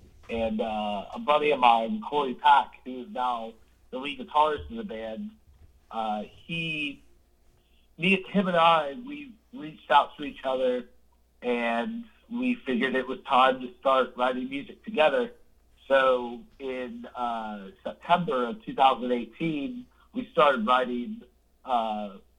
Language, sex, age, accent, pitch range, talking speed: English, male, 40-59, American, 110-145 Hz, 135 wpm